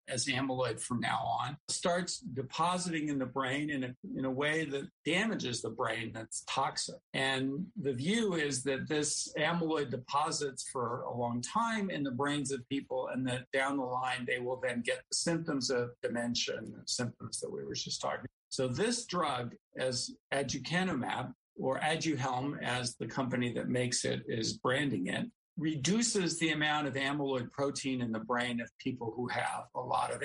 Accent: American